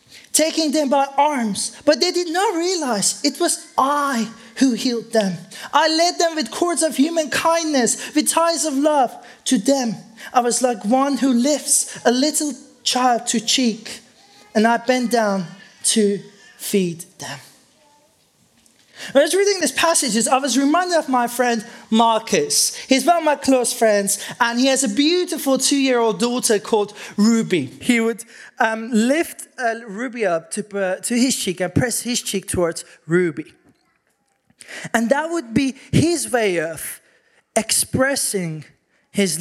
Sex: male